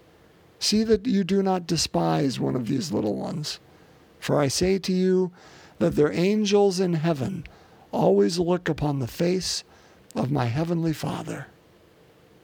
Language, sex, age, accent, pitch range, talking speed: English, male, 50-69, American, 125-180 Hz, 145 wpm